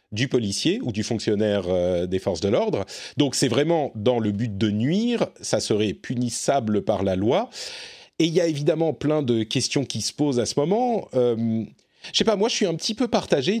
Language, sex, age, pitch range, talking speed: French, male, 40-59, 110-155 Hz, 220 wpm